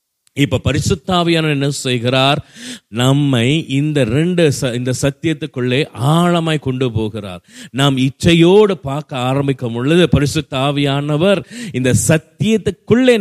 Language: Tamil